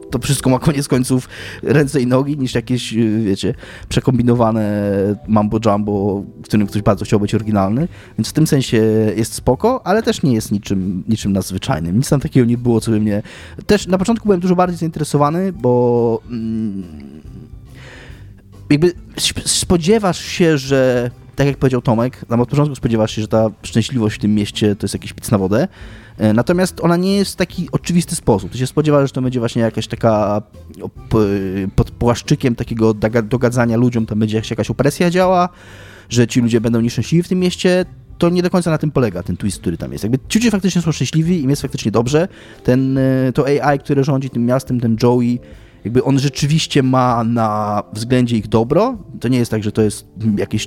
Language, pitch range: Polish, 110-145 Hz